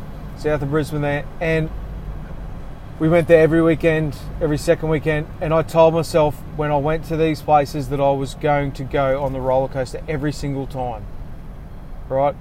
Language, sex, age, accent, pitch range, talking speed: English, male, 30-49, Australian, 135-160 Hz, 180 wpm